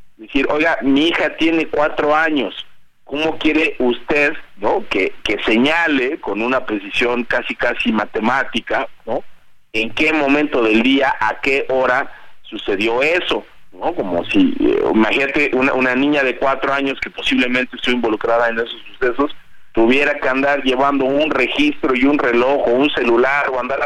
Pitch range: 120-155 Hz